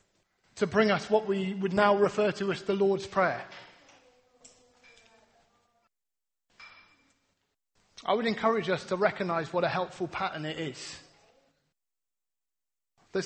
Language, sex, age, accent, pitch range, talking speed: English, male, 30-49, British, 180-215 Hz, 120 wpm